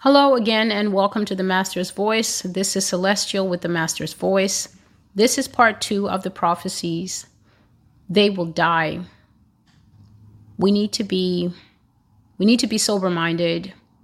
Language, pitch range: English, 175-205 Hz